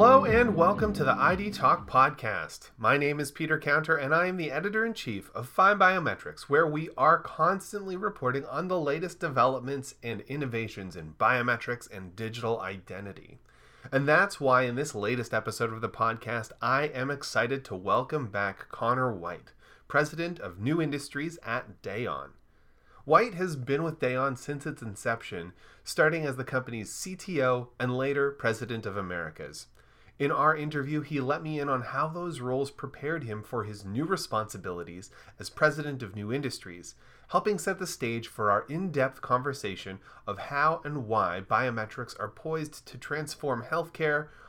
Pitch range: 110-150 Hz